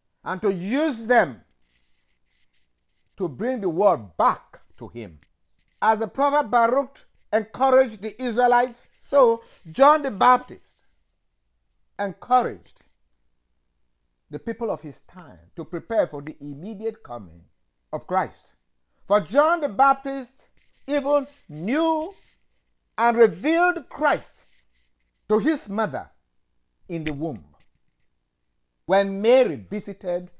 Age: 50-69